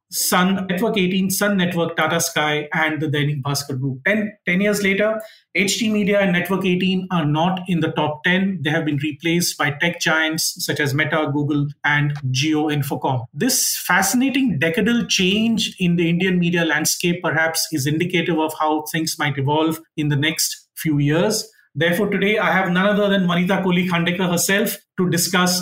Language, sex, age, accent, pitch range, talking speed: English, male, 30-49, Indian, 155-185 Hz, 175 wpm